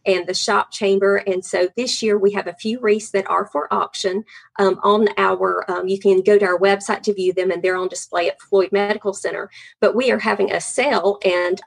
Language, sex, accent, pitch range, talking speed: English, female, American, 185-210 Hz, 230 wpm